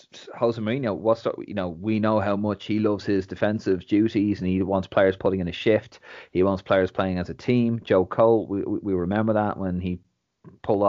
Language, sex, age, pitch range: English, male, 30-49, 95-115 Hz